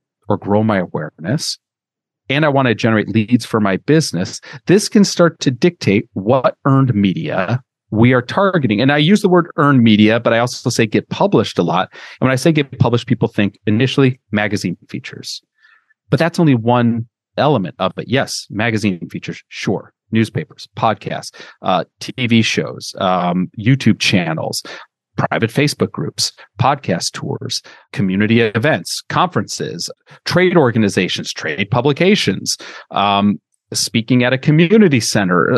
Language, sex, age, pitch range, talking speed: English, male, 40-59, 110-165 Hz, 145 wpm